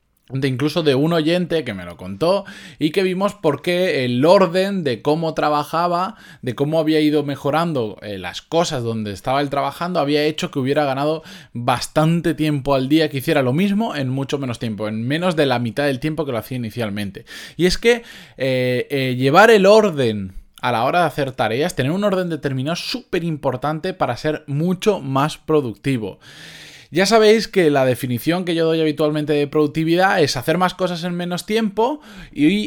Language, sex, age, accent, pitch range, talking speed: Spanish, male, 20-39, Spanish, 130-175 Hz, 190 wpm